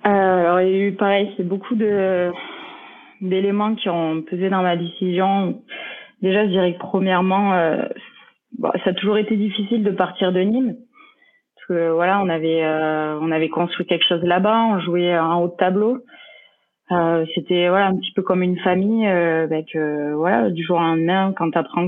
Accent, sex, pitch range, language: French, female, 170-205 Hz, French